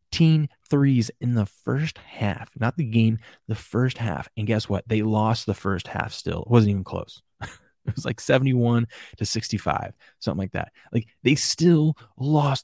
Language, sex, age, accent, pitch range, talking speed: English, male, 20-39, American, 105-120 Hz, 175 wpm